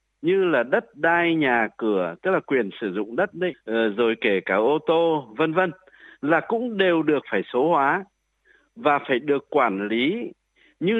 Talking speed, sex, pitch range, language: 180 wpm, male, 145-230 Hz, Vietnamese